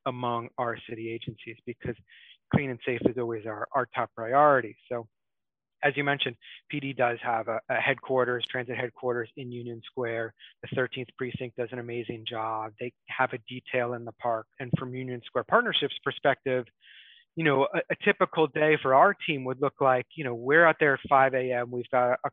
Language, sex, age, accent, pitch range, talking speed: English, male, 30-49, American, 125-140 Hz, 195 wpm